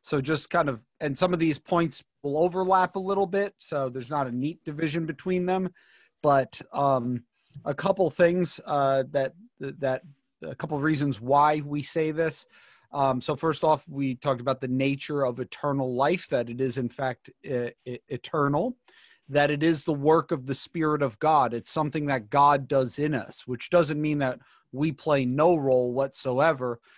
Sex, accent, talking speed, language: male, American, 185 wpm, English